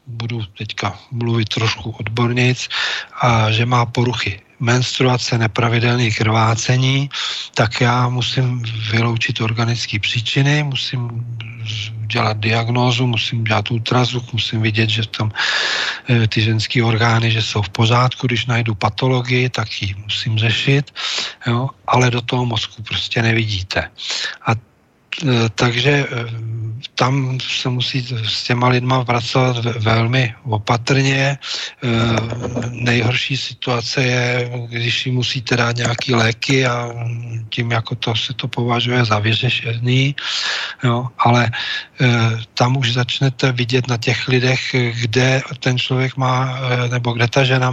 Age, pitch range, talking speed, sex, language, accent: 40-59, 115-125 Hz, 120 wpm, male, Czech, native